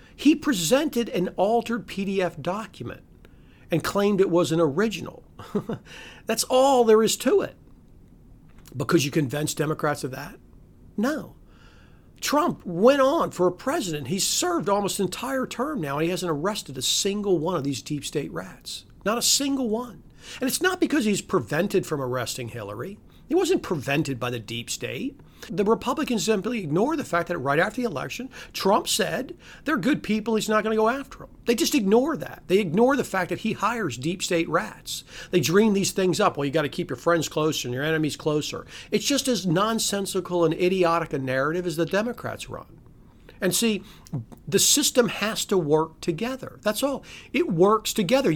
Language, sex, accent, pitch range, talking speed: English, male, American, 165-230 Hz, 185 wpm